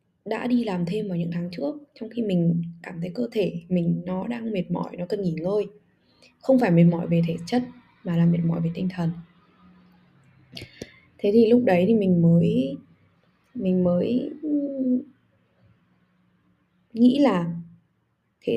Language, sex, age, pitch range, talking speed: Vietnamese, female, 10-29, 170-230 Hz, 160 wpm